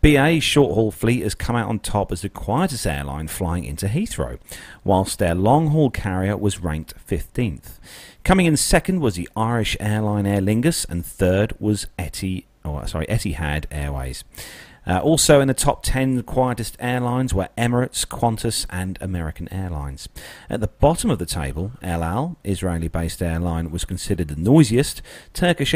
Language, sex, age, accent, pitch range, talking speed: English, male, 40-59, British, 85-120 Hz, 150 wpm